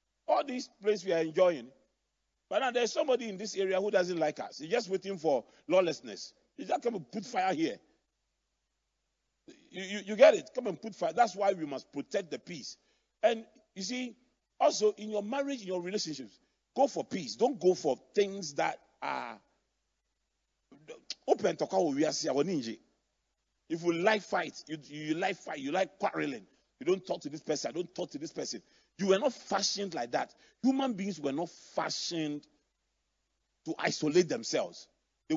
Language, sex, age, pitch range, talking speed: English, male, 40-59, 165-235 Hz, 180 wpm